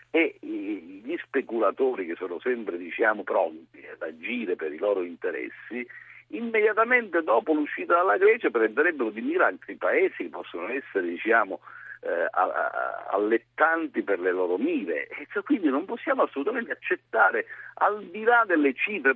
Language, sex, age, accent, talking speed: Italian, male, 50-69, native, 140 wpm